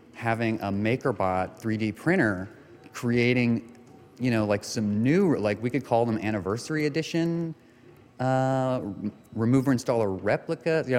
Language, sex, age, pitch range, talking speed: English, male, 30-49, 95-120 Hz, 125 wpm